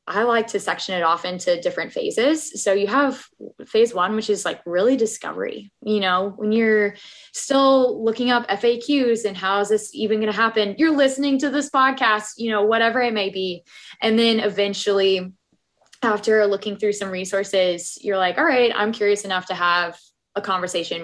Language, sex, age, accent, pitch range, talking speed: English, female, 20-39, American, 185-225 Hz, 185 wpm